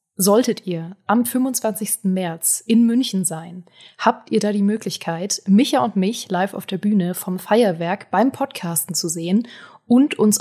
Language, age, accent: German, 20-39, German